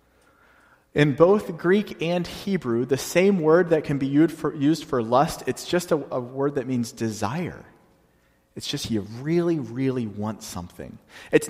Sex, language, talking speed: male, English, 160 wpm